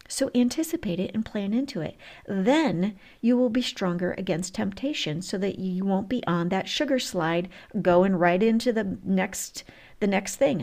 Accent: American